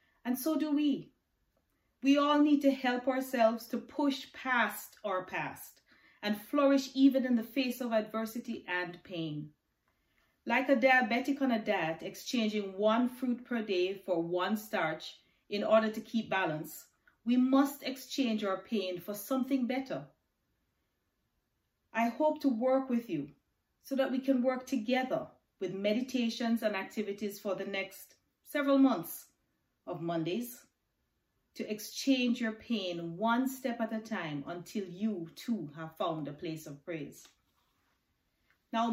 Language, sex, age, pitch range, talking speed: English, female, 30-49, 185-255 Hz, 145 wpm